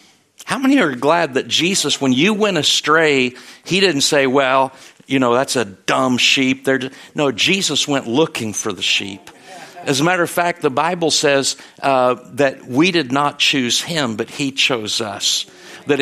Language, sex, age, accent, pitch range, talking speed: English, male, 50-69, American, 130-170 Hz, 175 wpm